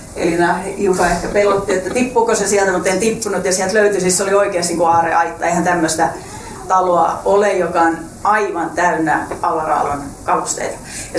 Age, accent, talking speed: 30-49, native, 160 wpm